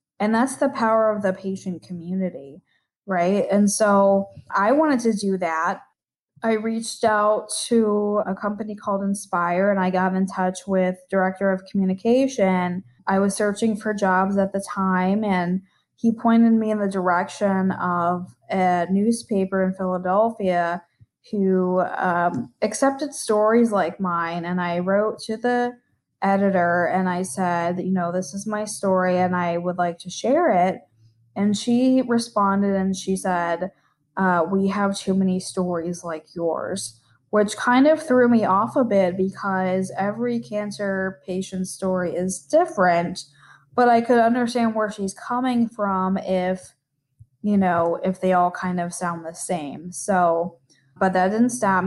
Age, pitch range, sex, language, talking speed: 20-39, 180-210 Hz, female, English, 155 wpm